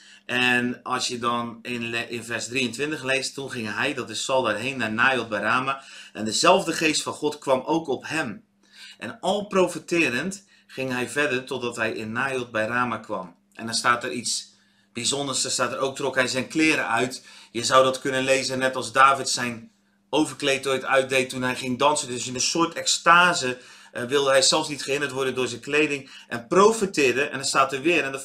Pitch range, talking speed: 125-155 Hz, 205 wpm